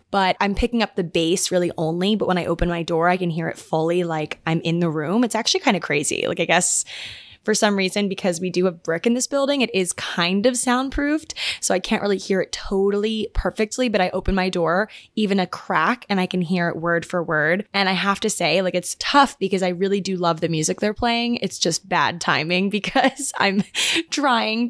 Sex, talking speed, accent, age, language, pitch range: female, 235 wpm, American, 20-39, English, 175-215 Hz